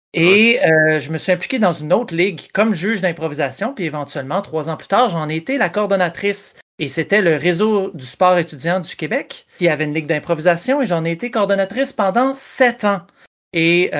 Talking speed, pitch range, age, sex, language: 200 wpm, 160-210 Hz, 40-59, male, French